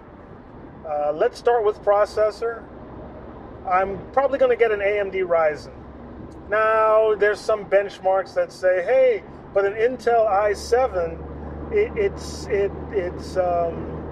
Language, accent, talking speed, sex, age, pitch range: English, American, 125 wpm, male, 30-49, 150-200 Hz